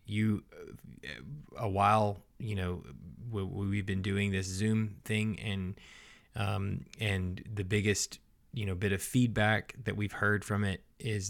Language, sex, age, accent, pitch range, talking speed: English, male, 20-39, American, 95-110 Hz, 145 wpm